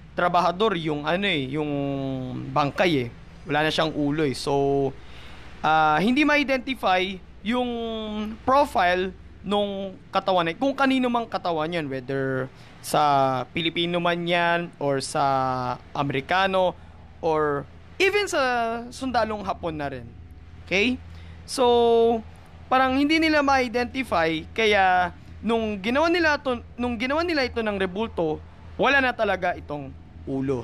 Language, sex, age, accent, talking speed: Filipino, male, 20-39, native, 120 wpm